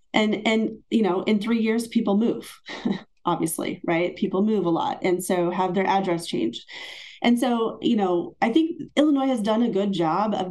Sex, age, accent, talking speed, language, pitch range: female, 30-49, American, 195 wpm, English, 170-220 Hz